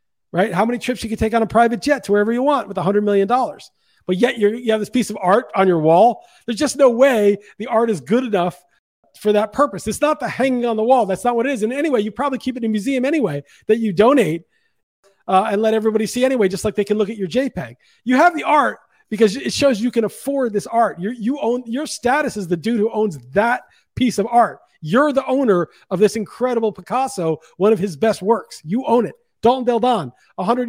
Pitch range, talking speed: 195-245 Hz, 250 wpm